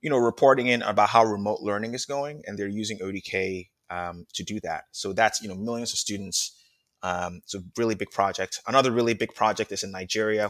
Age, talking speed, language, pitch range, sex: 20-39, 215 wpm, English, 95-115 Hz, male